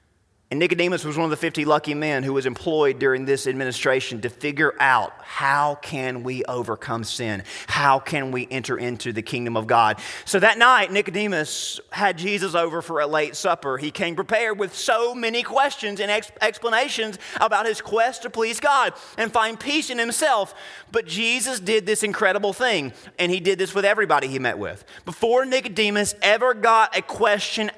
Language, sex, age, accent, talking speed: English, male, 30-49, American, 180 wpm